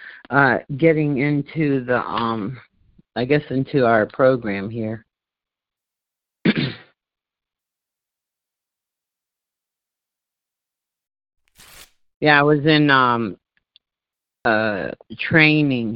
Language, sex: English, male